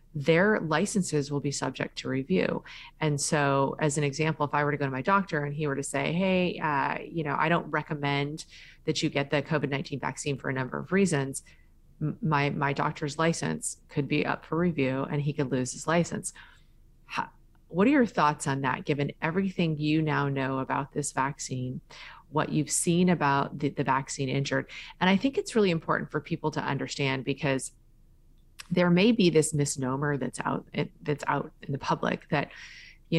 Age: 30-49